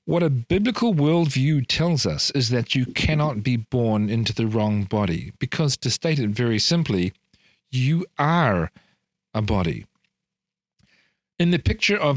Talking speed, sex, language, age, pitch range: 150 wpm, male, English, 40-59, 110-150 Hz